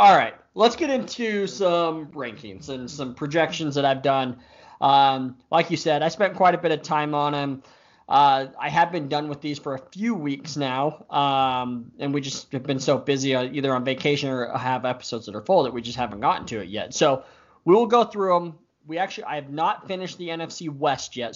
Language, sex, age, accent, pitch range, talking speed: English, male, 20-39, American, 135-165 Hz, 220 wpm